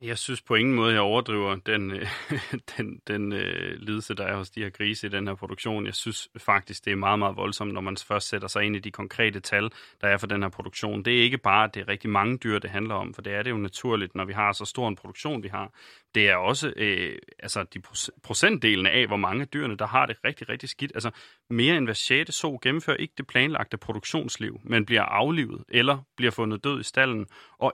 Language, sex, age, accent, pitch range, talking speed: Danish, male, 30-49, native, 105-130 Hz, 245 wpm